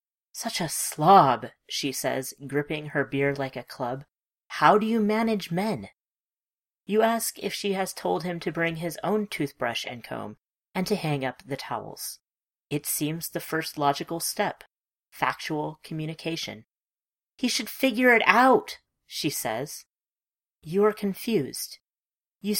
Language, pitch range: English, 140-205 Hz